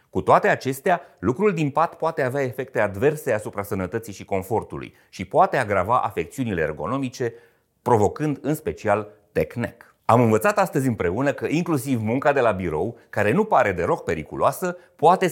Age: 30-49